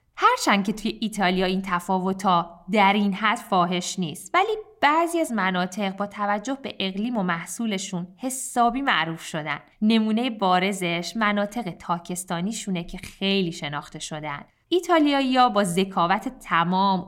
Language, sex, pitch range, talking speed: Persian, female, 175-220 Hz, 130 wpm